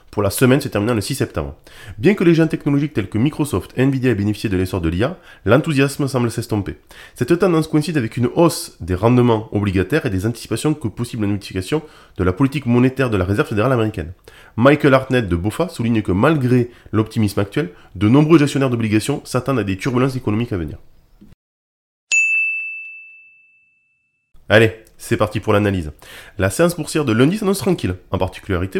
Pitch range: 105-150 Hz